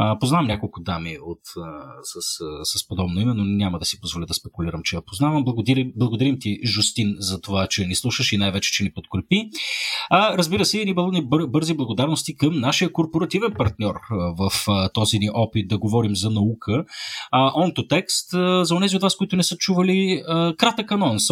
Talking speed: 195 wpm